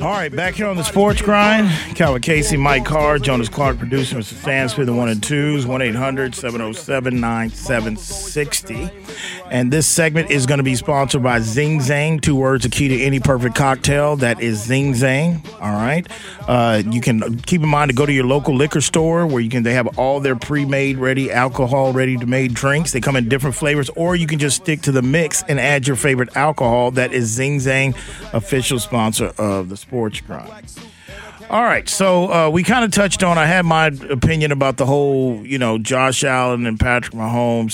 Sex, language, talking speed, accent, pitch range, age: male, English, 195 wpm, American, 120-150 Hz, 40-59